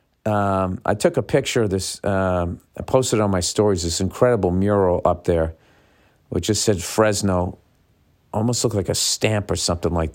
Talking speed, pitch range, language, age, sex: 185 wpm, 85-110 Hz, English, 50-69, male